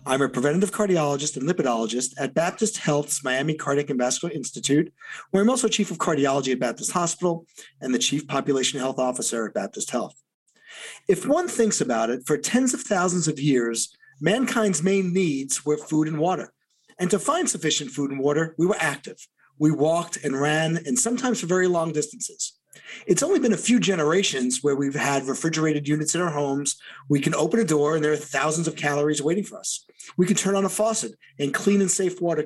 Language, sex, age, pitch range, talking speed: English, male, 40-59, 145-200 Hz, 200 wpm